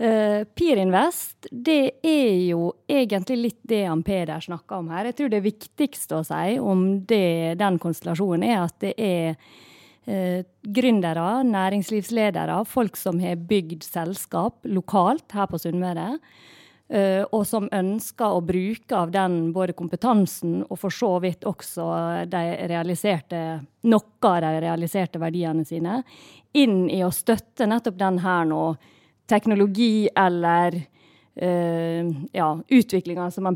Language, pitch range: English, 170-225 Hz